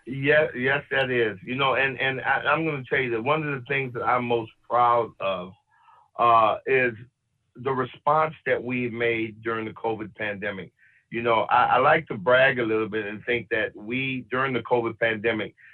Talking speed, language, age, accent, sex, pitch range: 200 wpm, English, 50-69, American, male, 110-130 Hz